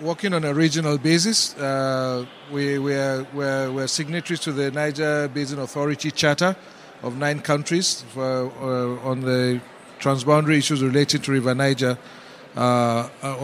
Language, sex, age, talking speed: English, male, 50-69, 150 wpm